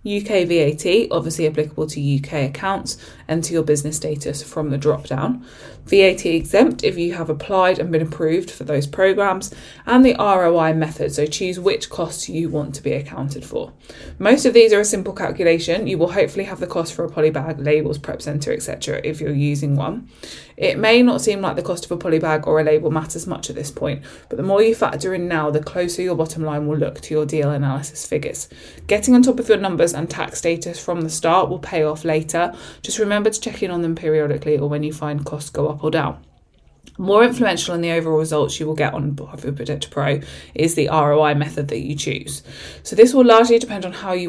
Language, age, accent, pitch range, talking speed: English, 20-39, British, 150-190 Hz, 220 wpm